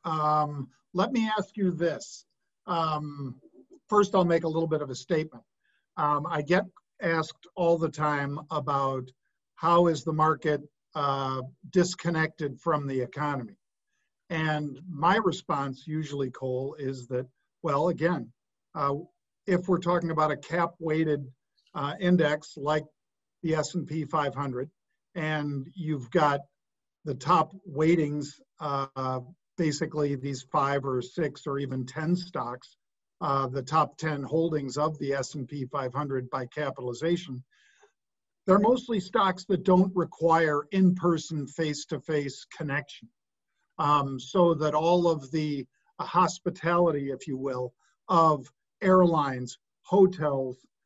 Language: English